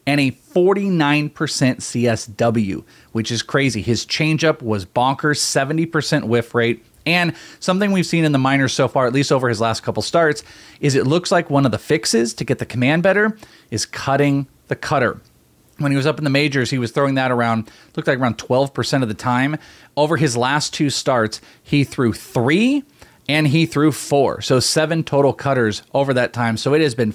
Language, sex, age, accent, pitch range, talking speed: English, male, 30-49, American, 115-150 Hz, 195 wpm